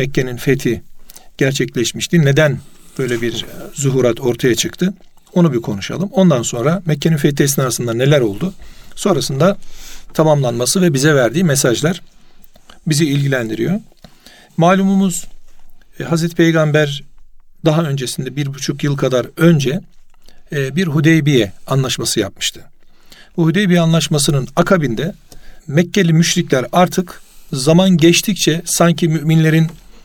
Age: 50-69